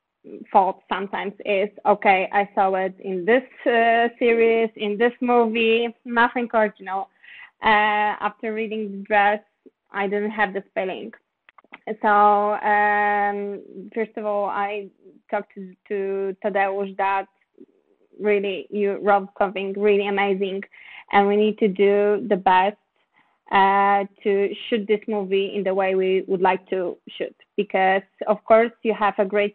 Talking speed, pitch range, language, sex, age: 140 wpm, 195-210 Hz, English, female, 20-39